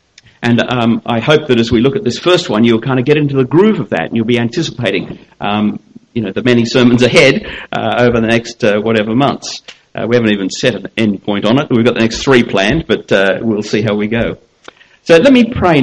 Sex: male